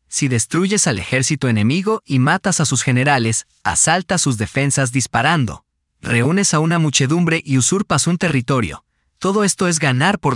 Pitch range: 115-165 Hz